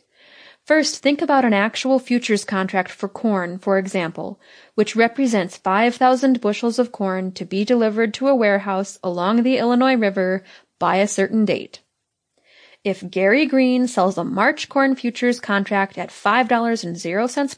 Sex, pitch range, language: female, 195-245 Hz, English